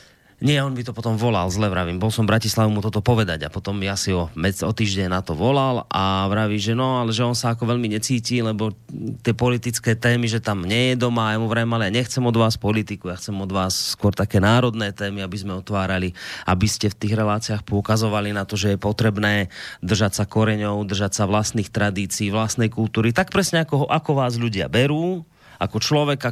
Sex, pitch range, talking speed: male, 105-125 Hz, 220 wpm